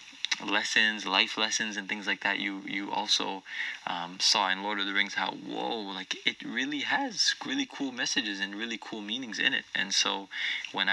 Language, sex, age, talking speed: English, male, 20-39, 190 wpm